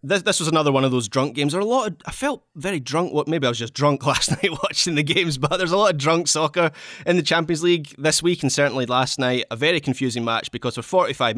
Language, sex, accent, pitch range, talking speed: English, male, British, 120-150 Hz, 280 wpm